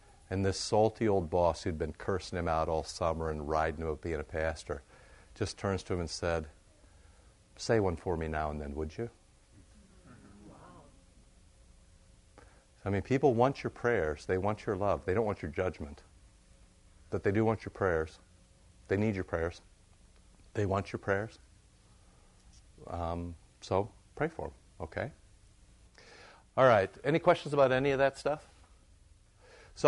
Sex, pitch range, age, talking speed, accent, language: male, 90-115 Hz, 50-69, 160 wpm, American, English